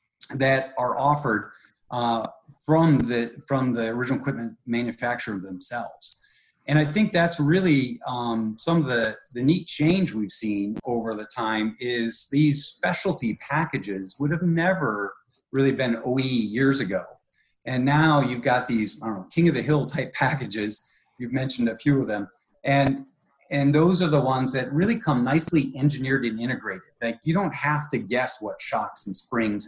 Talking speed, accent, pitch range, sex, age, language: 170 wpm, American, 115-145 Hz, male, 30-49, English